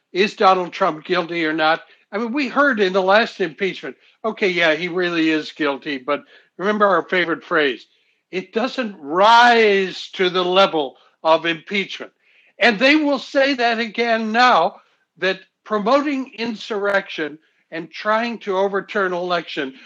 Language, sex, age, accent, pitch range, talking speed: English, male, 60-79, American, 180-255 Hz, 145 wpm